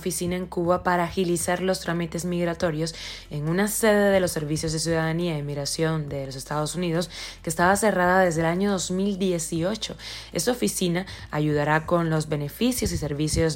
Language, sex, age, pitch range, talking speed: Spanish, female, 20-39, 160-190 Hz, 165 wpm